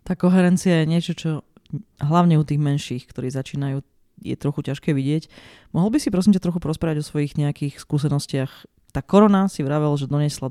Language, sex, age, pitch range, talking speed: Slovak, female, 20-39, 140-170 Hz, 185 wpm